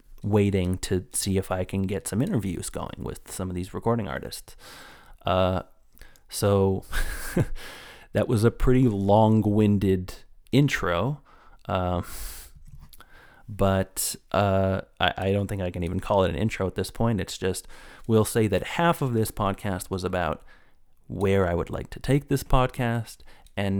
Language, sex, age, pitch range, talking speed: English, male, 30-49, 95-110 Hz, 155 wpm